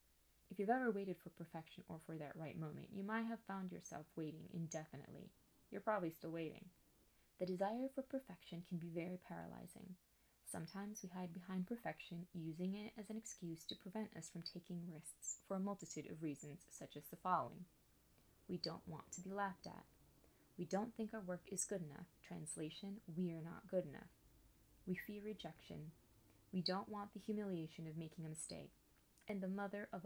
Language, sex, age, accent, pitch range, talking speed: English, female, 20-39, American, 160-200 Hz, 185 wpm